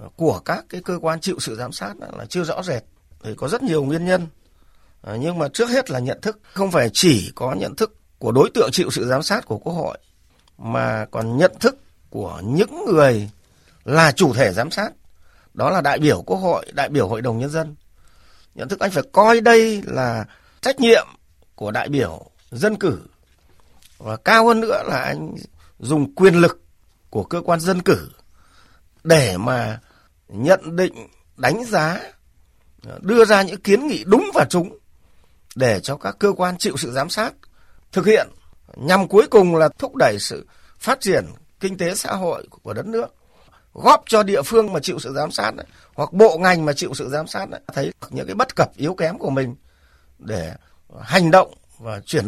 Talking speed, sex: 190 wpm, male